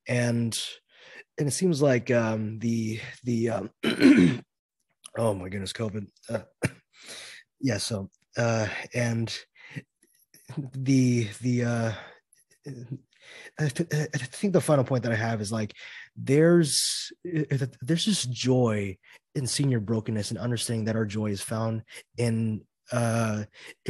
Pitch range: 105-135 Hz